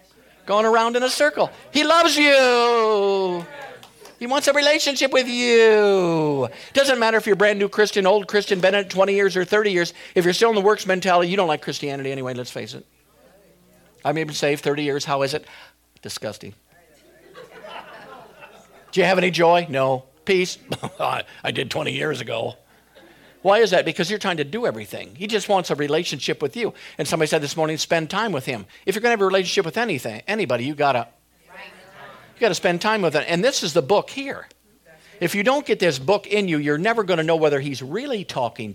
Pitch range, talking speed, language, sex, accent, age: 150-215 Hz, 210 wpm, English, male, American, 50-69